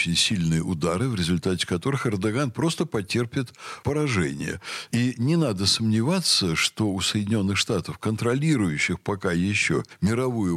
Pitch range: 95-145 Hz